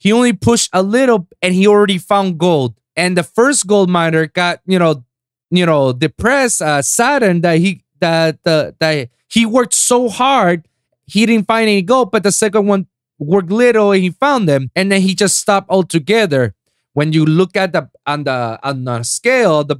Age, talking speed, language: 30-49, 200 wpm, English